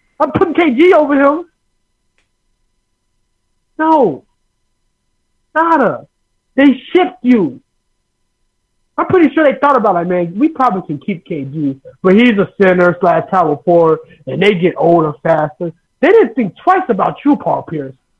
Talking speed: 140 wpm